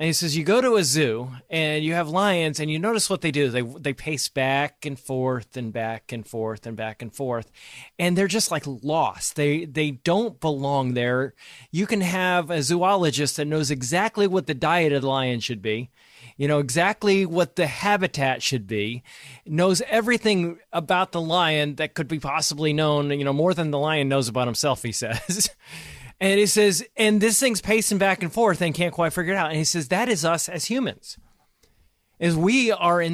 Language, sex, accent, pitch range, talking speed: English, male, American, 140-180 Hz, 210 wpm